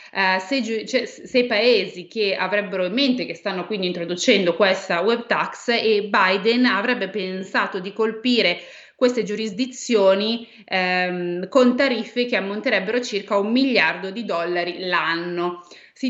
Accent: native